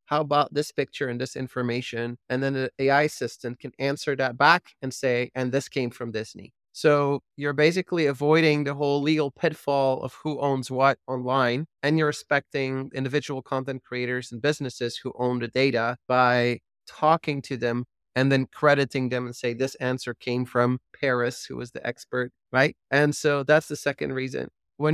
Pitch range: 125-150 Hz